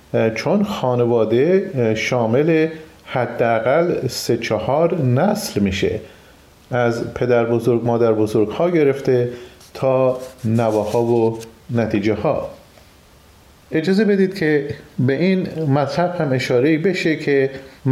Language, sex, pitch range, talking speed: Persian, male, 120-155 Hz, 100 wpm